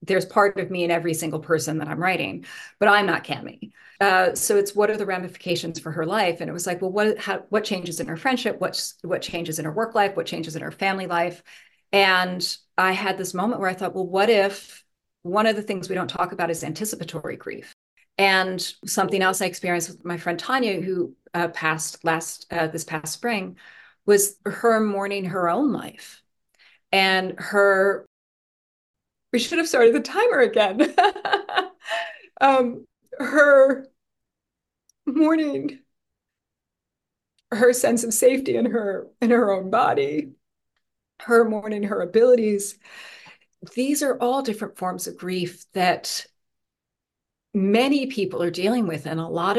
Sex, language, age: female, English, 30-49